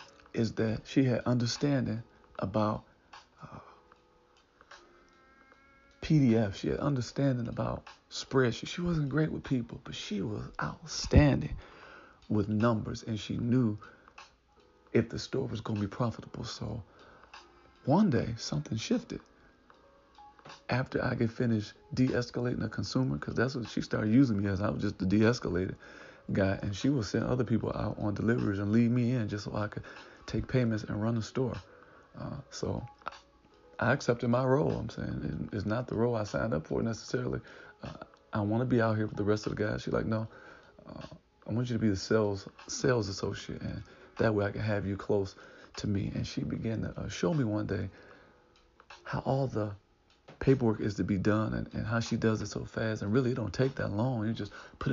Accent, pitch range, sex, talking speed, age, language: American, 105-125 Hz, male, 190 wpm, 40-59, English